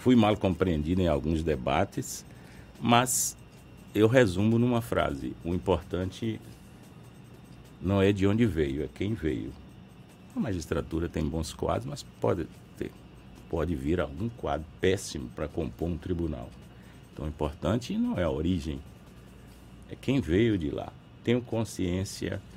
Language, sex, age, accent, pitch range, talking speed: Portuguese, male, 60-79, Brazilian, 80-115 Hz, 135 wpm